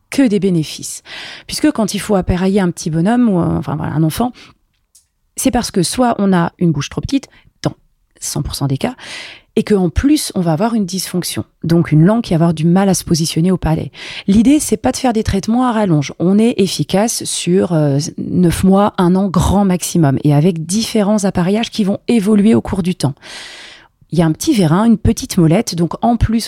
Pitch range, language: 170-225 Hz, French